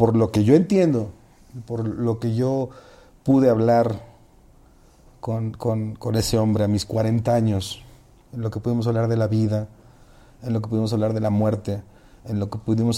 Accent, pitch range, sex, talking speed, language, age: Mexican, 105-120 Hz, male, 185 wpm, Spanish, 40-59